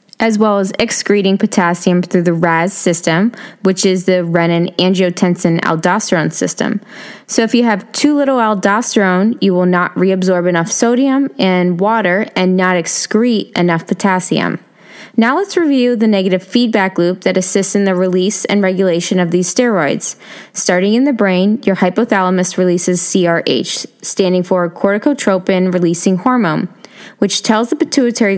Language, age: English, 20-39